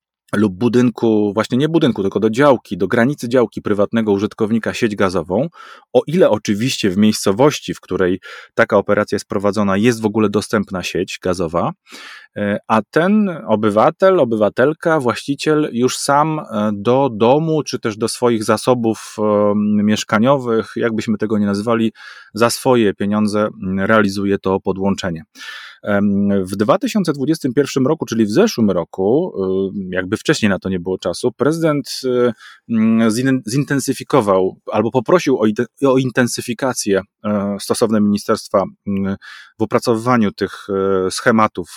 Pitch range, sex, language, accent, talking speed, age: 105-130 Hz, male, Polish, native, 120 wpm, 30-49